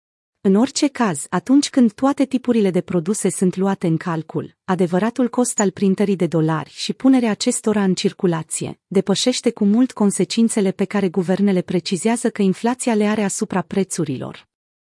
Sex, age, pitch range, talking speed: female, 30-49, 180-230 Hz, 155 wpm